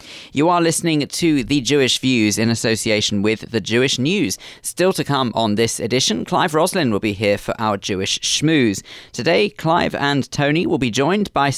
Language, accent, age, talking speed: English, British, 40-59, 185 wpm